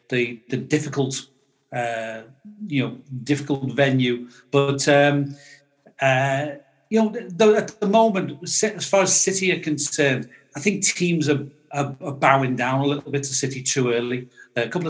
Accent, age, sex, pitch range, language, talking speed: British, 40-59, male, 130-155 Hz, English, 165 wpm